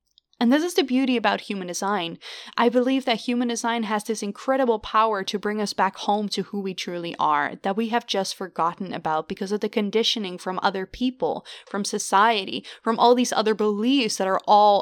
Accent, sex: American, female